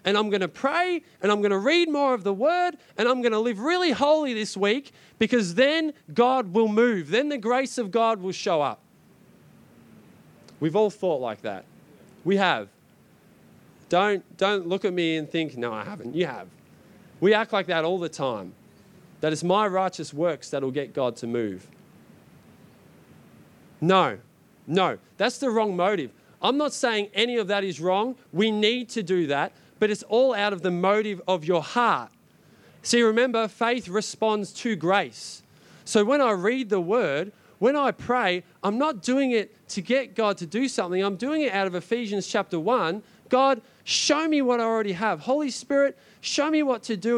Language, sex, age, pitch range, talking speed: English, male, 20-39, 190-250 Hz, 190 wpm